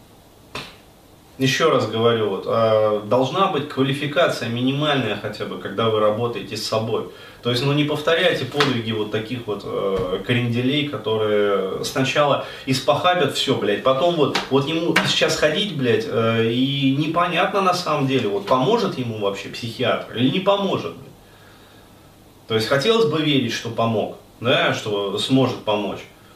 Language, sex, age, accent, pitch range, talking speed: Russian, male, 20-39, native, 110-145 Hz, 145 wpm